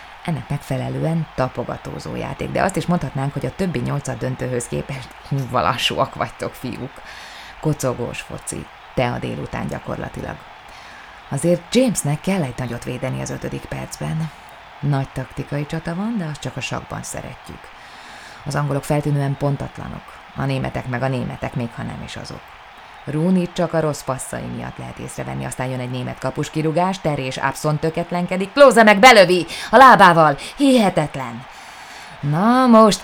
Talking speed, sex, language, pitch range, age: 145 wpm, female, Hungarian, 130-175 Hz, 20-39